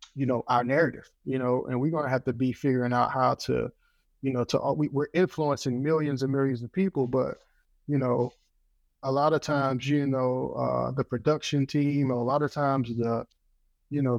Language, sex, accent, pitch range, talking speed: English, male, American, 125-145 Hz, 210 wpm